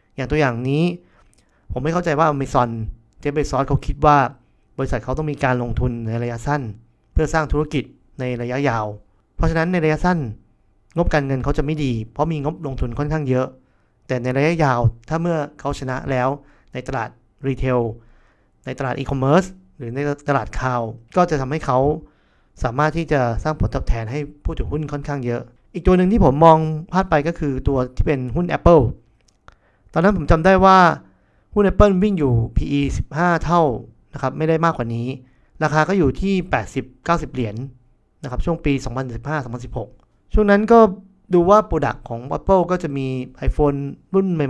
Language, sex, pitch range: Thai, male, 125-160 Hz